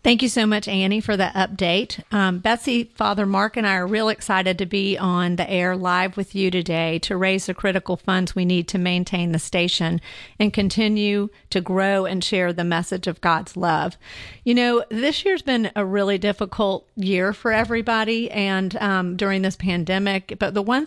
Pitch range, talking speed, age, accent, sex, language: 175-210 Hz, 195 wpm, 40-59, American, female, English